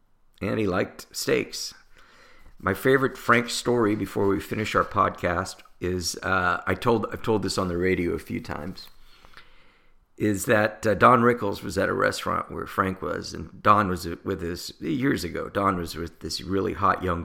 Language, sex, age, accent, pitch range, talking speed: English, male, 50-69, American, 90-115 Hz, 190 wpm